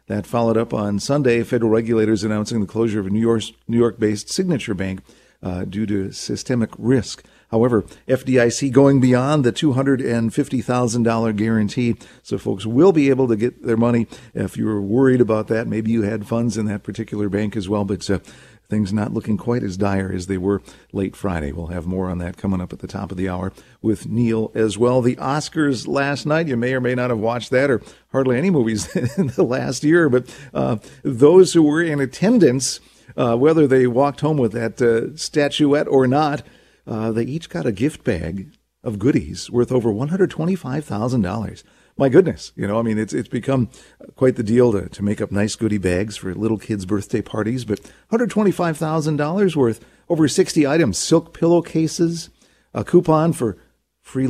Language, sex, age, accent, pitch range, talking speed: English, male, 50-69, American, 105-145 Hz, 190 wpm